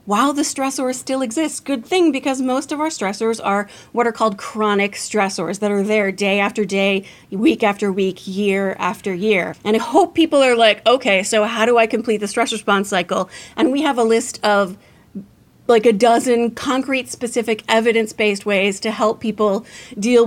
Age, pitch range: 30-49, 210-240 Hz